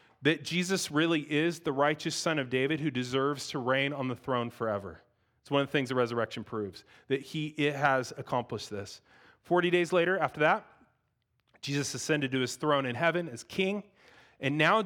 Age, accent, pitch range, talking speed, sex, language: 30-49, American, 130-180 Hz, 185 wpm, male, English